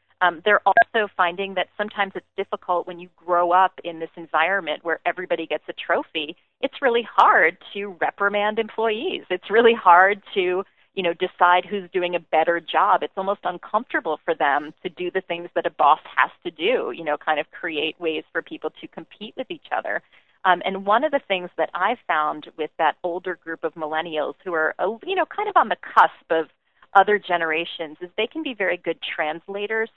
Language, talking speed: English, 200 wpm